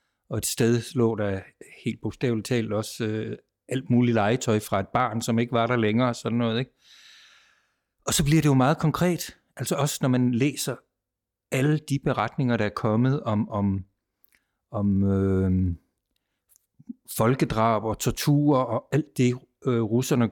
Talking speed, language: 150 wpm, Danish